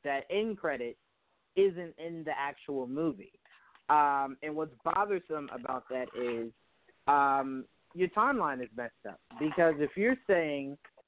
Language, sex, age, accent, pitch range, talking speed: English, male, 30-49, American, 135-165 Hz, 135 wpm